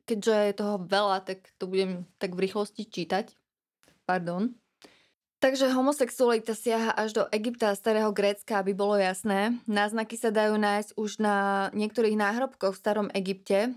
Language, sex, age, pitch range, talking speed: Slovak, female, 20-39, 200-225 Hz, 155 wpm